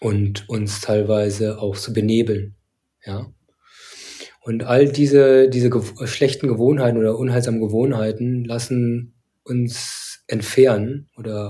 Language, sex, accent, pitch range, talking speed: German, male, German, 105-120 Hz, 115 wpm